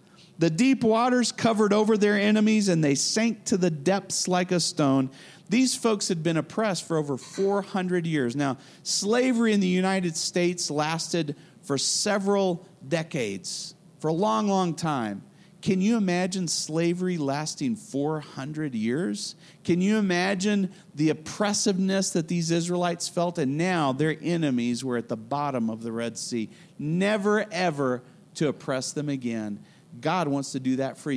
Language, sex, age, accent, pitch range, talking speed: English, male, 40-59, American, 140-185 Hz, 155 wpm